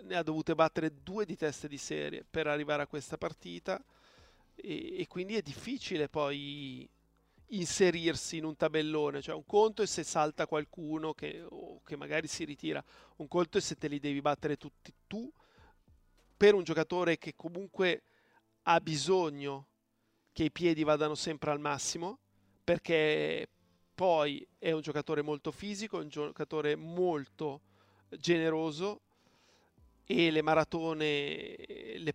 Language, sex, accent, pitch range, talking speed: Italian, male, native, 145-170 Hz, 140 wpm